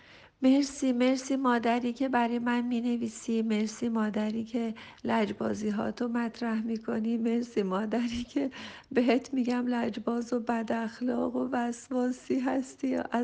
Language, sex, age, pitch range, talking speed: Persian, female, 40-59, 215-245 Hz, 120 wpm